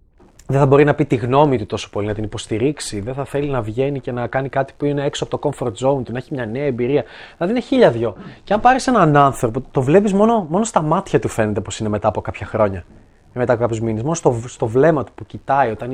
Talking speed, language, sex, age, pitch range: 265 wpm, Greek, male, 20-39, 110-145 Hz